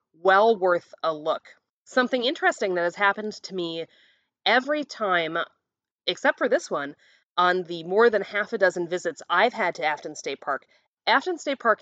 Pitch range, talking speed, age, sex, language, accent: 180-230 Hz, 175 wpm, 30-49, female, English, American